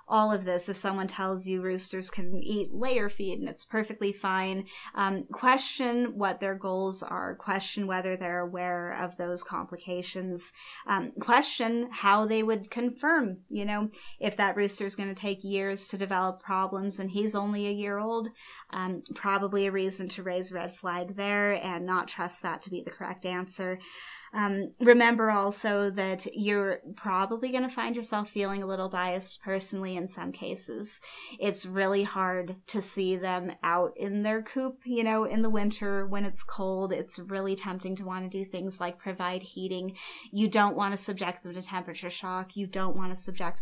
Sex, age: female, 10-29